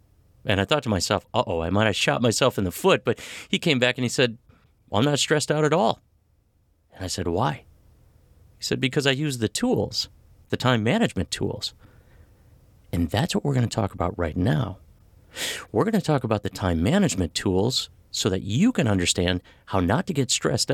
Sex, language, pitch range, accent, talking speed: male, English, 95-125 Hz, American, 210 wpm